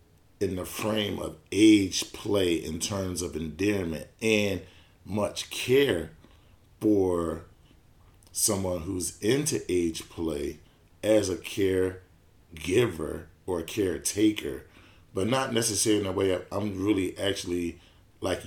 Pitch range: 85-105 Hz